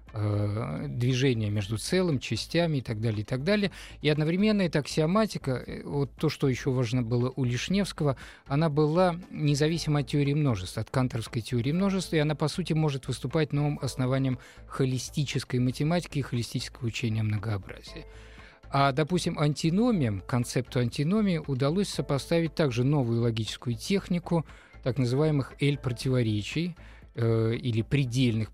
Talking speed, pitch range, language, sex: 130 wpm, 115-155 Hz, Russian, male